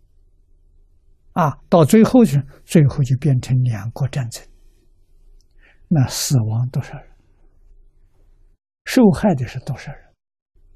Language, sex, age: Chinese, male, 60-79